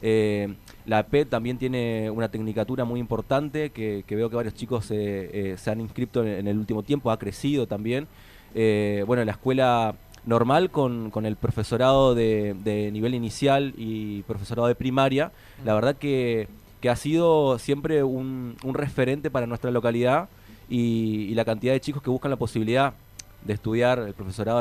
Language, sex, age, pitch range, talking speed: Spanish, male, 20-39, 105-125 Hz, 180 wpm